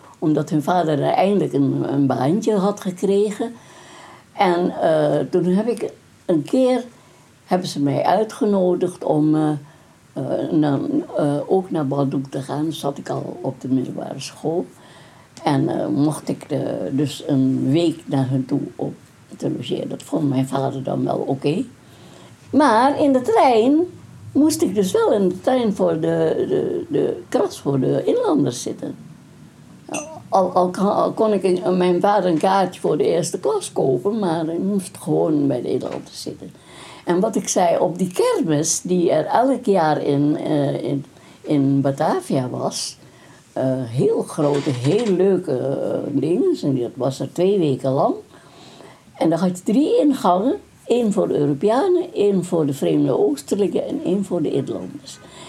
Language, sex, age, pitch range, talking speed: Dutch, female, 60-79, 150-220 Hz, 165 wpm